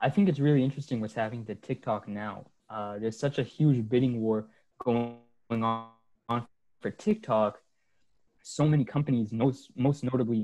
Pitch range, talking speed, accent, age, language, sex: 110-135 Hz, 155 wpm, American, 20-39, English, male